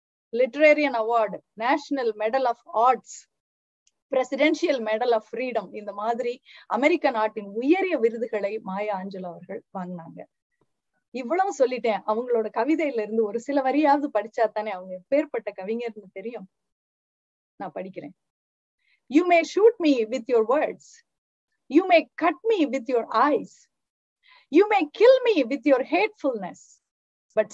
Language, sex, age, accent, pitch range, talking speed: Tamil, female, 30-49, native, 225-335 Hz, 125 wpm